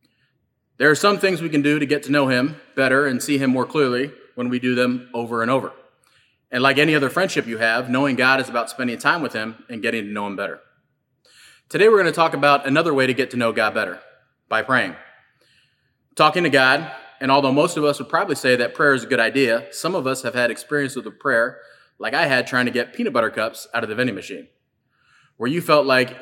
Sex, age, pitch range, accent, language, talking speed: male, 20-39, 125-145 Hz, American, English, 245 wpm